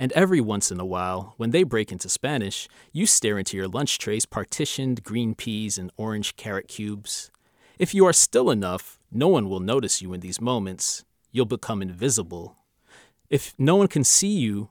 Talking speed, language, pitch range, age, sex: 190 wpm, English, 105-150 Hz, 30-49, male